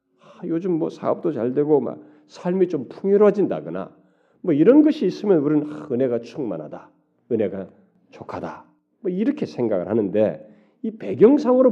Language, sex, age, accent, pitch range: Korean, male, 40-59, native, 115-195 Hz